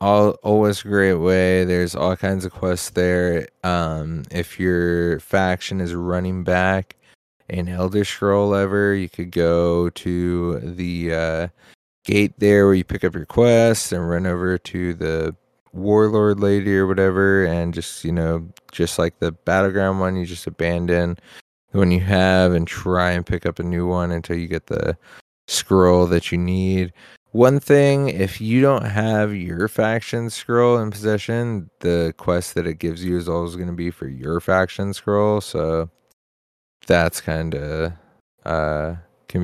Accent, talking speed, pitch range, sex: American, 165 wpm, 85-95 Hz, male